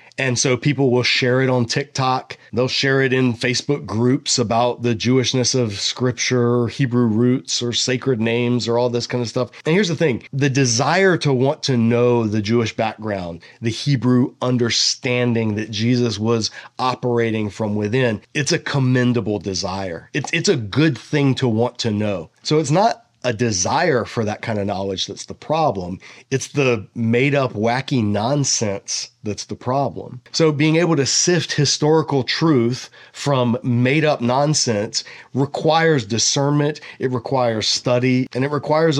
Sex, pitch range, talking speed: male, 115-140 Hz, 160 wpm